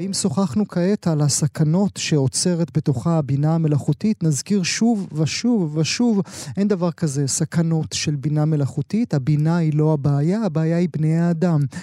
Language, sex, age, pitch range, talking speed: Hebrew, male, 30-49, 150-185 Hz, 140 wpm